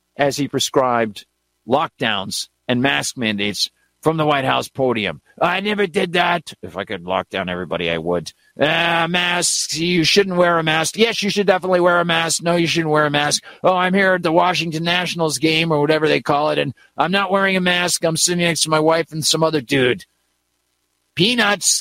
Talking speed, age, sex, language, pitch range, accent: 205 wpm, 50-69, male, English, 135-185 Hz, American